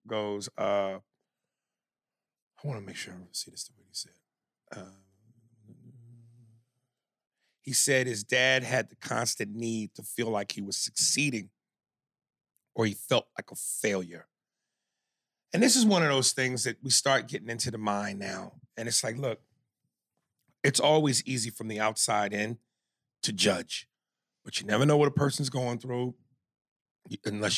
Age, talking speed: 40-59, 160 wpm